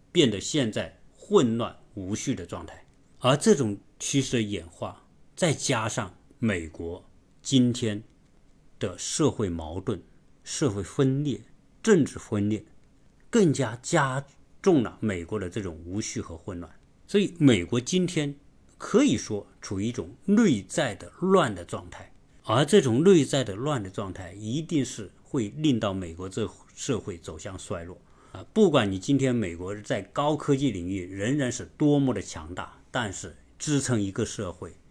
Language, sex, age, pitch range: Chinese, male, 50-69, 95-140 Hz